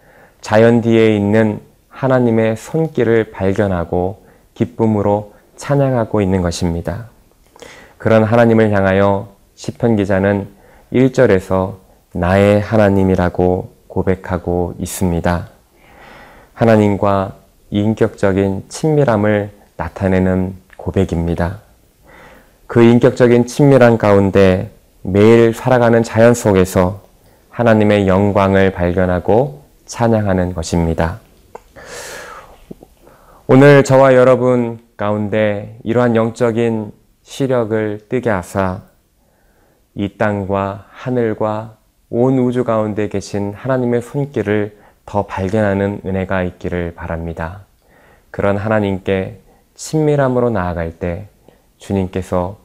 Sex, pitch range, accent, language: male, 95-115 Hz, native, Korean